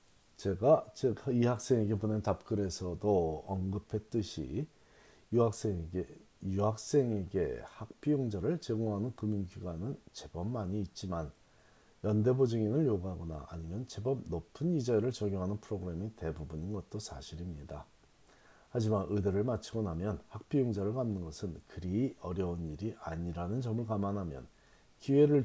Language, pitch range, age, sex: Korean, 85-115 Hz, 40-59, male